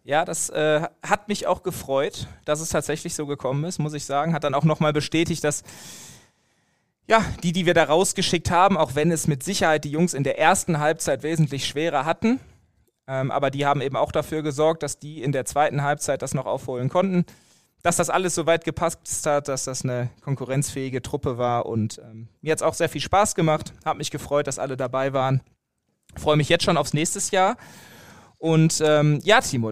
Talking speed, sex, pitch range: 210 wpm, male, 135-165 Hz